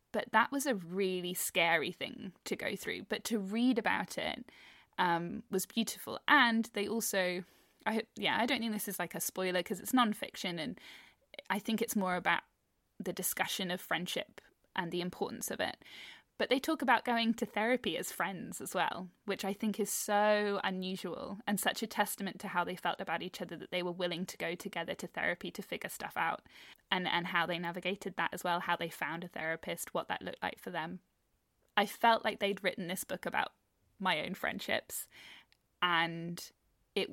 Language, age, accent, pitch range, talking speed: English, 10-29, British, 180-215 Hz, 195 wpm